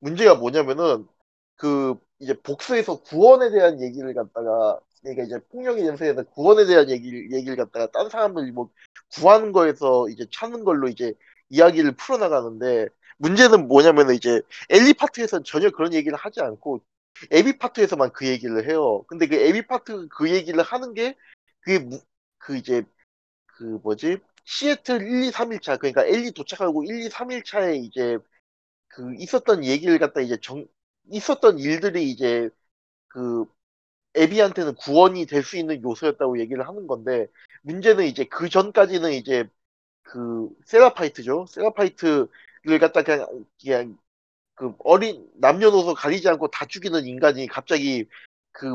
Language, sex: Korean, male